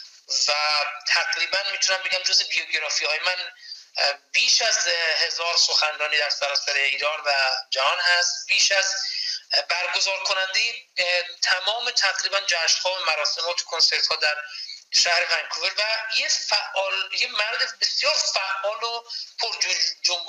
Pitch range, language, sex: 150-215 Hz, Persian, male